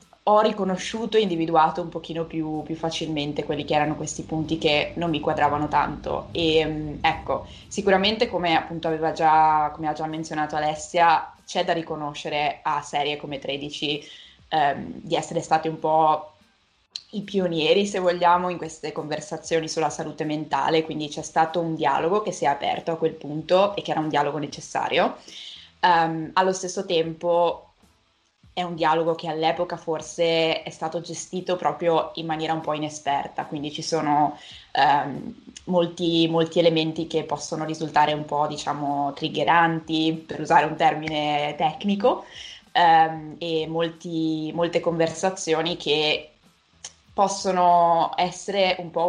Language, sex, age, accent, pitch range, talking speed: Italian, female, 20-39, native, 150-170 Hz, 145 wpm